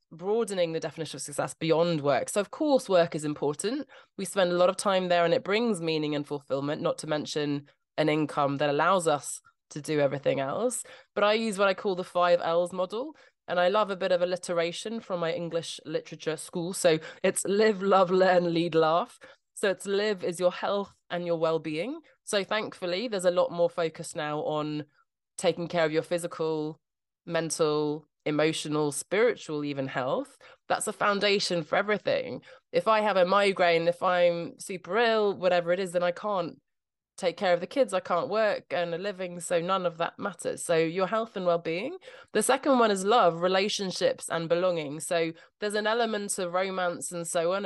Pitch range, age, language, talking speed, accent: 165-200 Hz, 20-39, English, 195 wpm, British